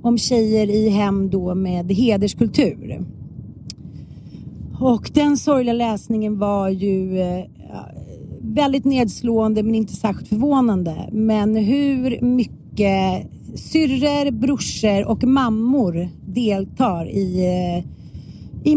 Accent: native